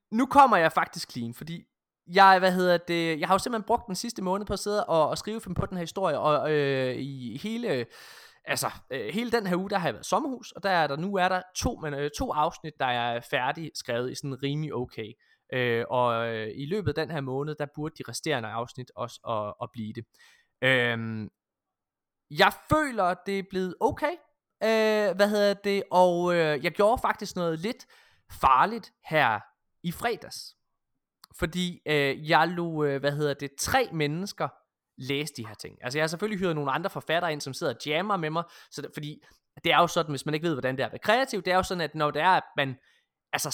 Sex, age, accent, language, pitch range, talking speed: male, 20-39, native, Danish, 140-195 Hz, 220 wpm